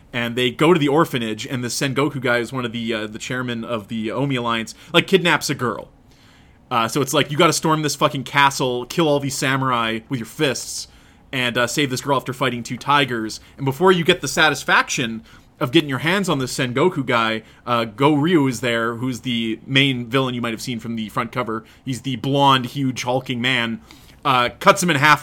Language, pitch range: English, 120-155 Hz